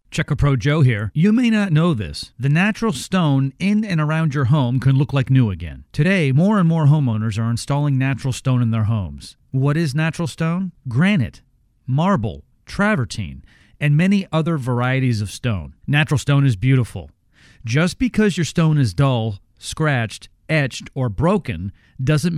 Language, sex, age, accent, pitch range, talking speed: English, male, 40-59, American, 115-160 Hz, 165 wpm